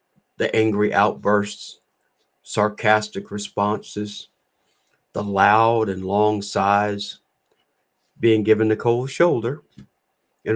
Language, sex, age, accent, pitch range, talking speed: English, male, 50-69, American, 100-120 Hz, 90 wpm